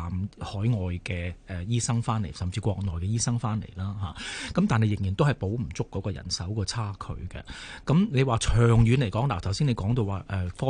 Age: 30-49